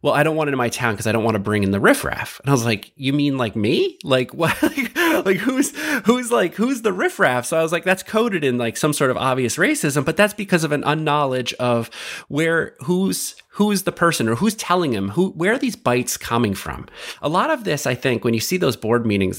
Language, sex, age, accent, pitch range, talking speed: English, male, 30-49, American, 110-145 Hz, 255 wpm